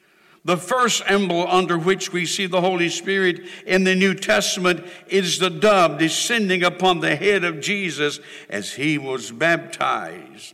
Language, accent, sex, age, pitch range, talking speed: English, American, male, 60-79, 185-225 Hz, 155 wpm